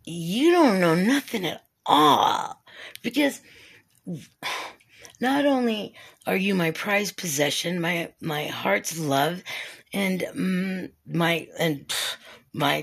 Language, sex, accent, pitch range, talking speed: English, female, American, 160-225 Hz, 105 wpm